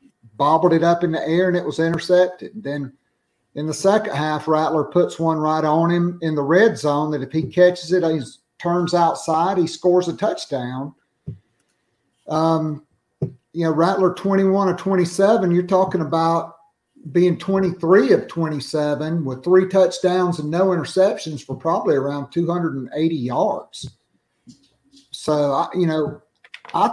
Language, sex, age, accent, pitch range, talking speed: English, male, 50-69, American, 150-185 Hz, 145 wpm